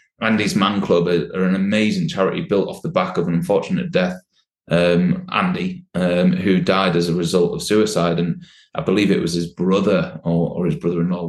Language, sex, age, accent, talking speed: English, male, 20-39, British, 190 wpm